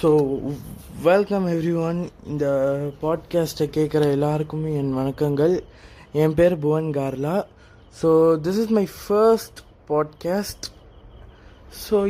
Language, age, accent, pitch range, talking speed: Tamil, 20-39, native, 145-190 Hz, 90 wpm